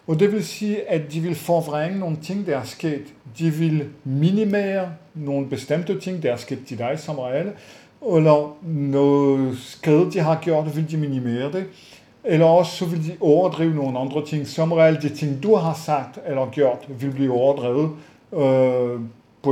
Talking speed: 175 wpm